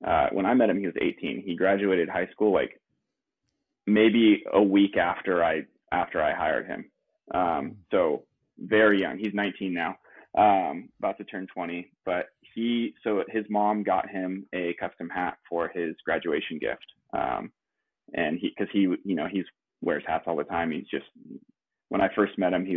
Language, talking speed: English, 180 wpm